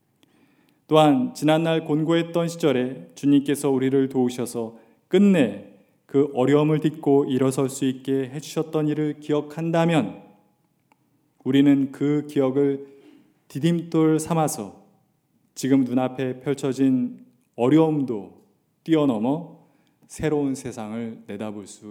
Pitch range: 120-150 Hz